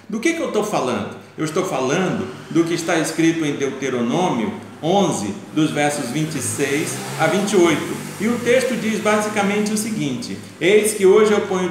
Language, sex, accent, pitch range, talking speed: Portuguese, male, Brazilian, 155-225 Hz, 170 wpm